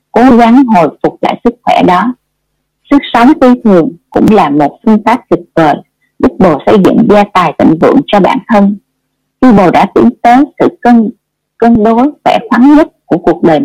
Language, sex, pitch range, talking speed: Vietnamese, female, 195-255 Hz, 200 wpm